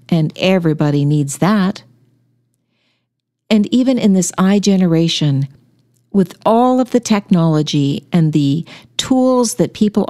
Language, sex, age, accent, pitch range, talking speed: English, female, 50-69, American, 140-220 Hz, 120 wpm